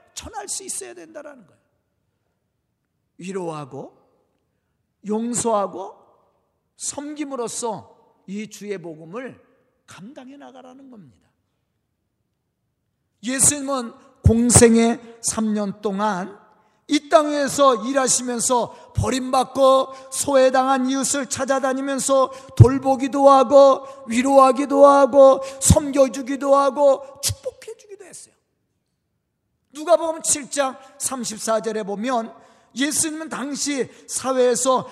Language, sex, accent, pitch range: Korean, male, native, 195-270 Hz